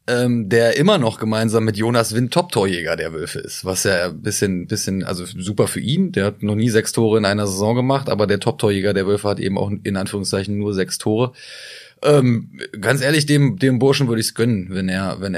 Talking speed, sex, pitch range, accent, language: 220 wpm, male, 95-110 Hz, German, German